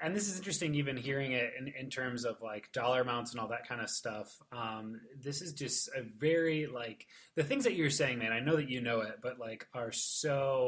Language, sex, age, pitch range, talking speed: English, male, 20-39, 115-145 Hz, 245 wpm